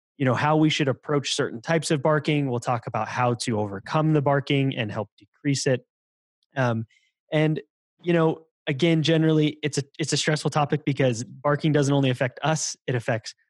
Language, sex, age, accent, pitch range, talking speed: English, male, 20-39, American, 125-150 Hz, 185 wpm